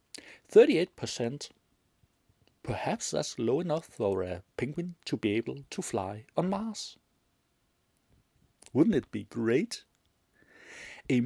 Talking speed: 110 wpm